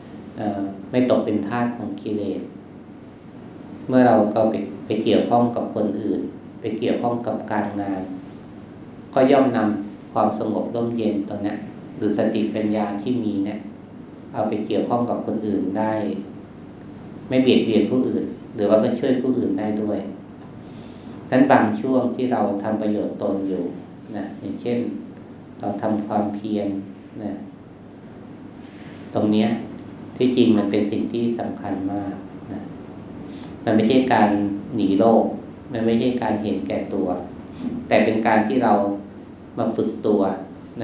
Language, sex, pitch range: Thai, male, 100-115 Hz